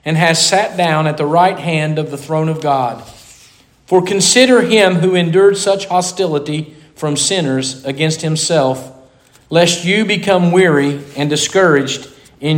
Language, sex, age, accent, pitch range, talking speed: English, male, 40-59, American, 140-175 Hz, 150 wpm